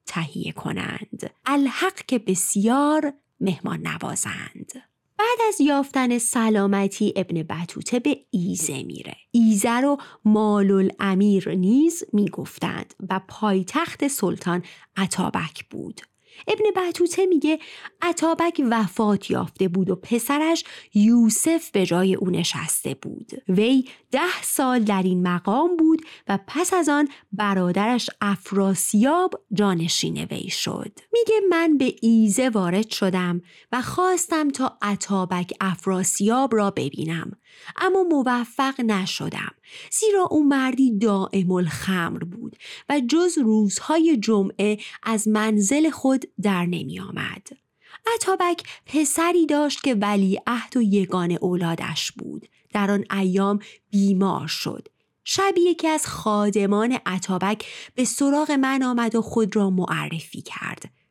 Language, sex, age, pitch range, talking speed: Persian, female, 30-49, 195-285 Hz, 115 wpm